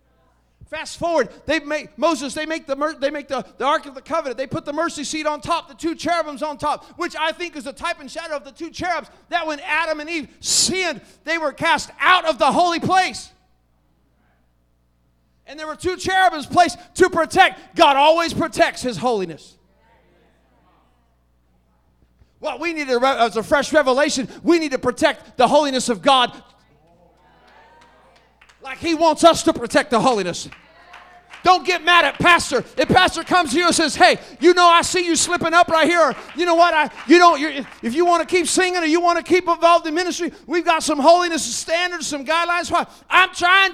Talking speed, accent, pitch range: 200 wpm, American, 245-340 Hz